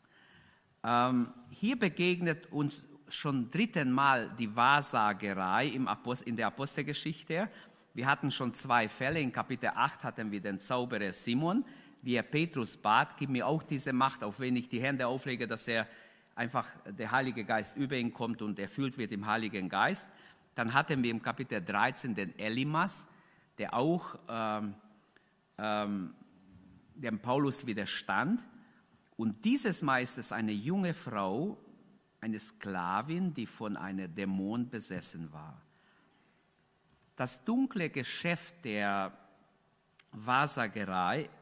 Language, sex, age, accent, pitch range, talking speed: German, male, 50-69, German, 105-150 Hz, 130 wpm